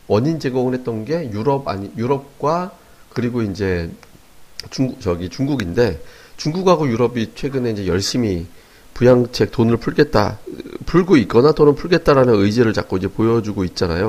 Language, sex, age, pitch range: Korean, male, 40-59, 105-135 Hz